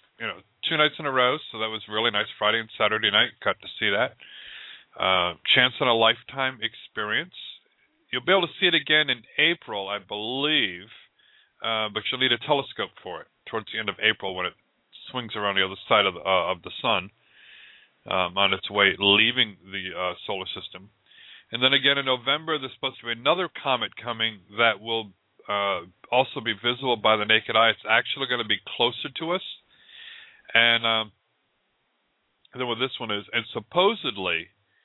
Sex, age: male, 40-59